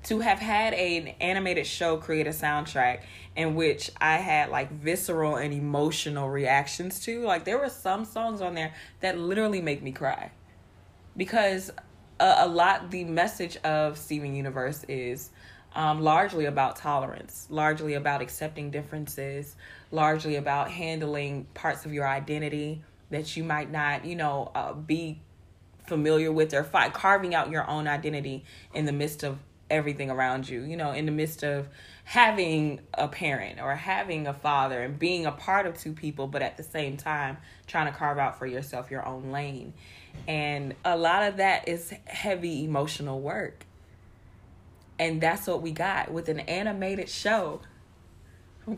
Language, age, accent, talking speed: English, 20-39, American, 165 wpm